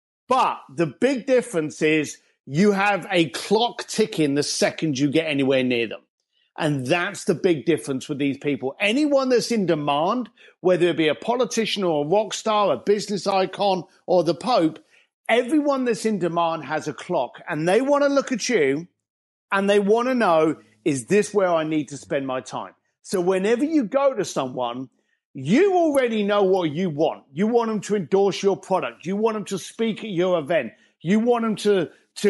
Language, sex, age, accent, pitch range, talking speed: English, male, 50-69, British, 165-225 Hz, 195 wpm